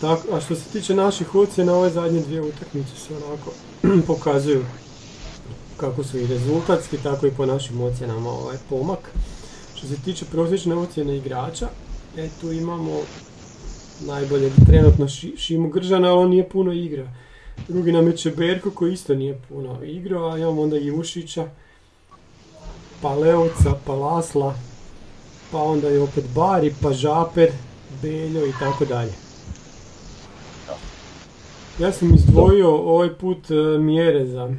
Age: 40-59